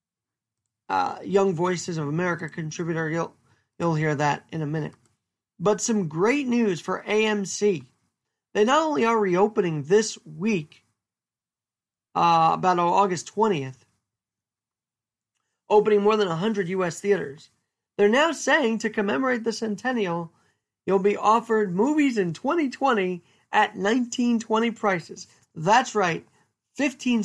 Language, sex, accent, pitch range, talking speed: English, male, American, 165-225 Hz, 120 wpm